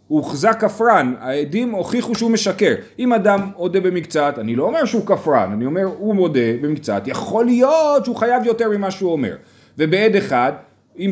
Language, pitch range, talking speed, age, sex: Hebrew, 150-210 Hz, 175 wpm, 30-49, male